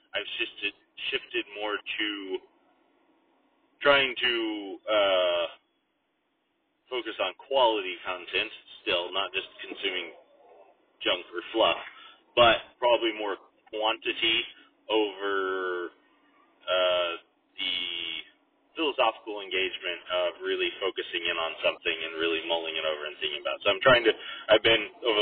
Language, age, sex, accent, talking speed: English, 30-49, male, American, 115 wpm